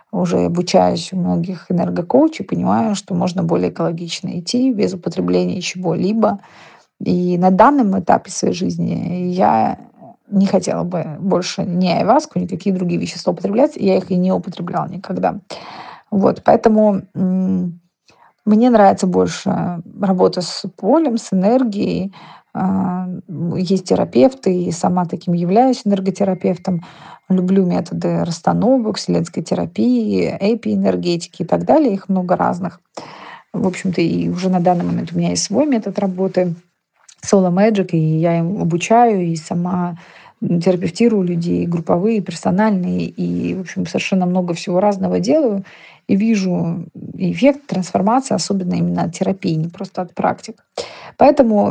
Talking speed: 130 wpm